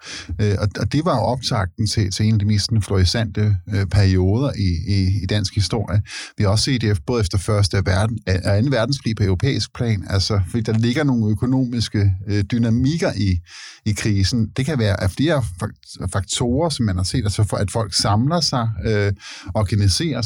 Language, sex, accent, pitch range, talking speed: Danish, male, native, 100-120 Hz, 180 wpm